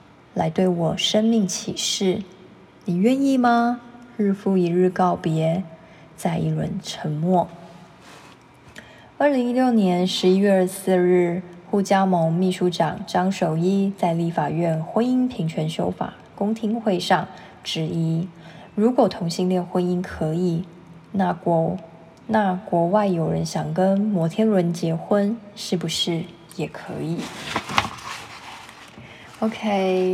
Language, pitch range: Chinese, 170-195 Hz